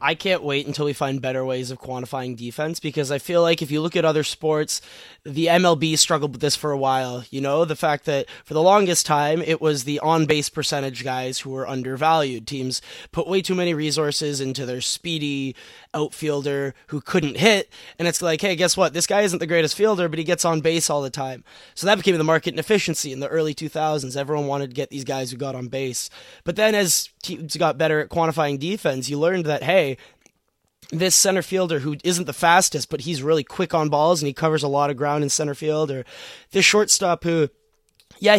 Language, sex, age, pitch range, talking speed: English, male, 20-39, 145-175 Hz, 225 wpm